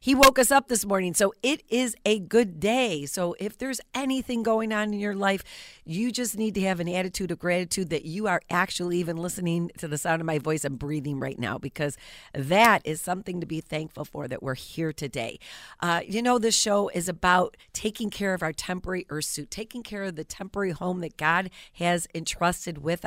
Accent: American